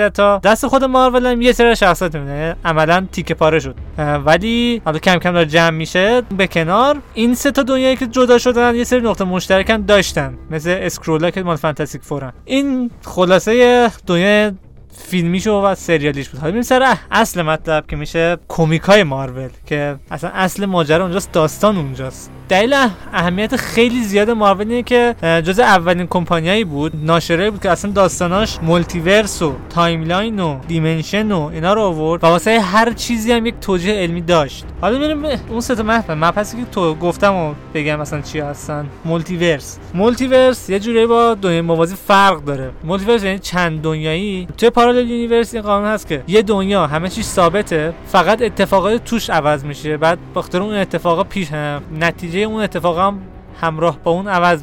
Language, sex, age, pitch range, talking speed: Persian, male, 20-39, 165-210 Hz, 165 wpm